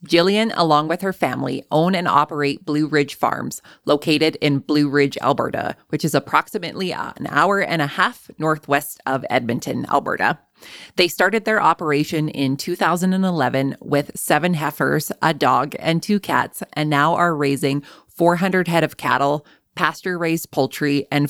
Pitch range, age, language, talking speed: 145-175 Hz, 20-39, English, 150 wpm